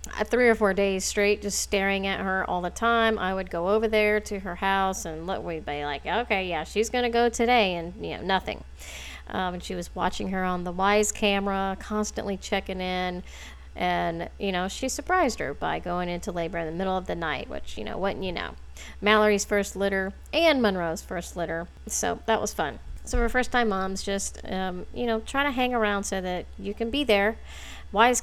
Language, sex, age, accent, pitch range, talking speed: English, female, 40-59, American, 175-220 Hz, 215 wpm